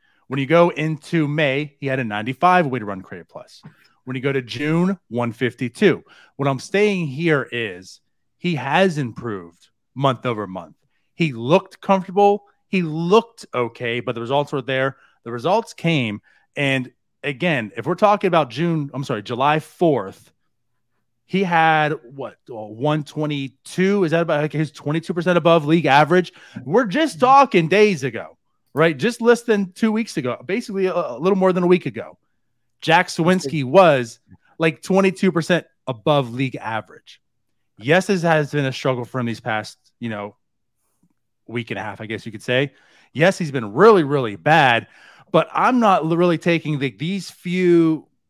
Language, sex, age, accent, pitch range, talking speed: English, male, 30-49, American, 125-180 Hz, 165 wpm